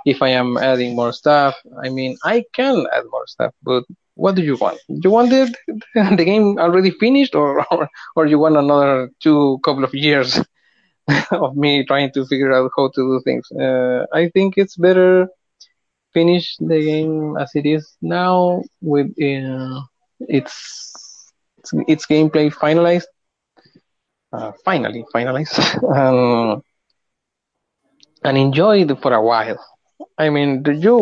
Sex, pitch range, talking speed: male, 125-170 Hz, 145 wpm